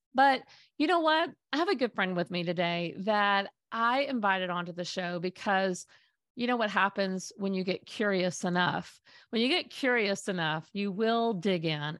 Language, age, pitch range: English, 40-59, 180-245 Hz